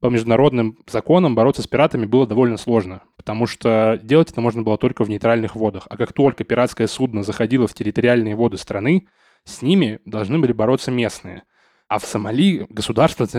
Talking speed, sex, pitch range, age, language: 175 wpm, male, 110-140 Hz, 10-29, Russian